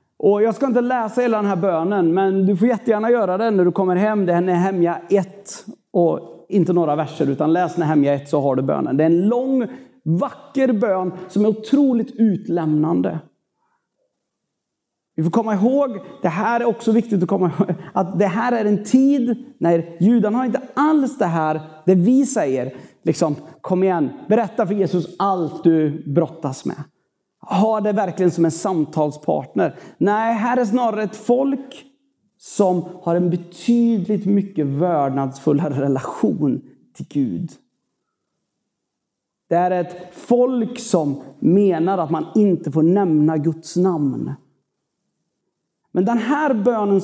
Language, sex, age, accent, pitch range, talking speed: Swedish, male, 30-49, native, 170-230 Hz, 155 wpm